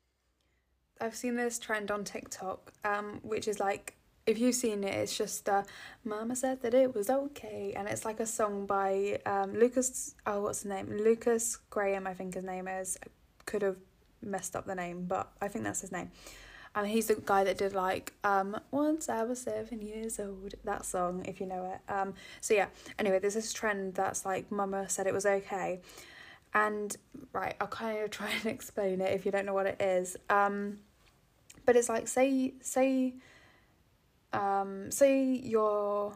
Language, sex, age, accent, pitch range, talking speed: English, female, 10-29, British, 195-220 Hz, 190 wpm